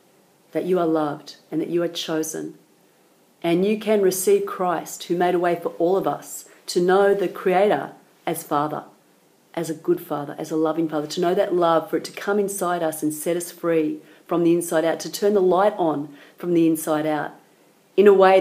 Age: 40-59